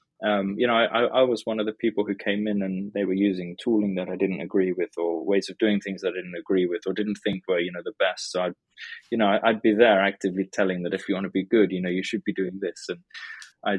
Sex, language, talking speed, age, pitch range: male, English, 285 wpm, 20-39, 95-115 Hz